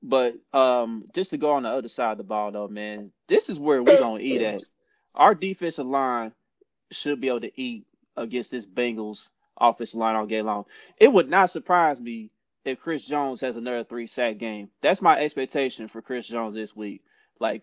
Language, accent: English, American